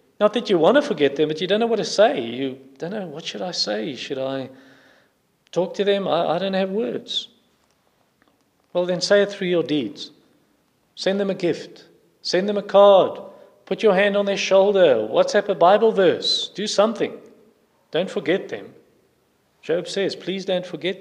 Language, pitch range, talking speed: English, 140-195 Hz, 190 wpm